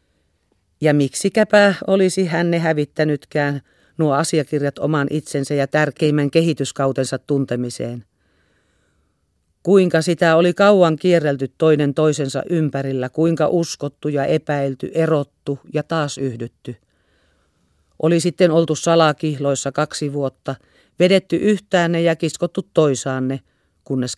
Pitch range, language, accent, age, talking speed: 125-165 Hz, Finnish, native, 40-59, 100 wpm